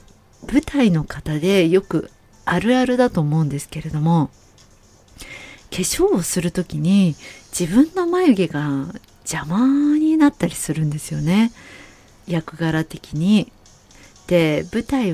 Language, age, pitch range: Japanese, 50-69, 145-195 Hz